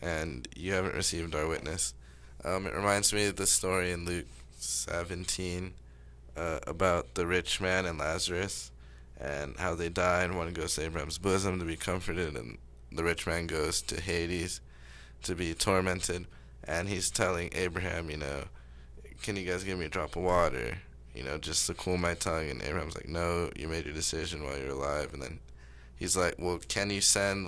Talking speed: 190 wpm